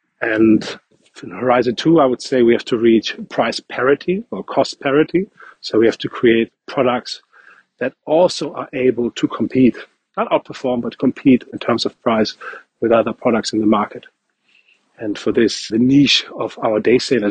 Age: 40-59